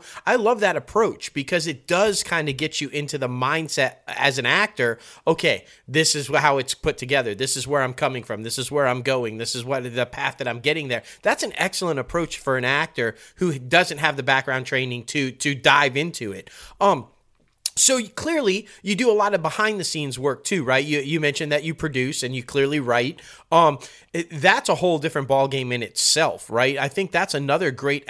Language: English